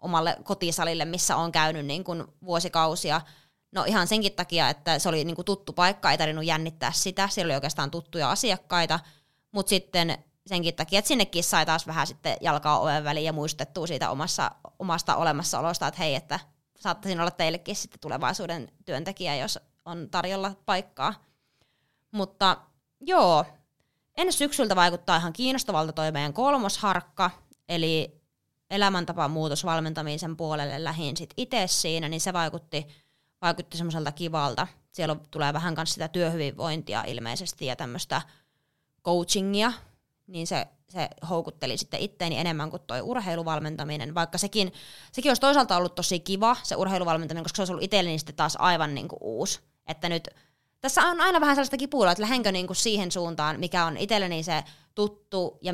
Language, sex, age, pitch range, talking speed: Finnish, female, 20-39, 155-190 Hz, 155 wpm